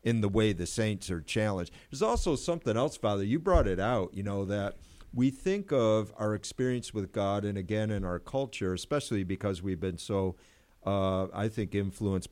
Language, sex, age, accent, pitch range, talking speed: English, male, 50-69, American, 95-120 Hz, 195 wpm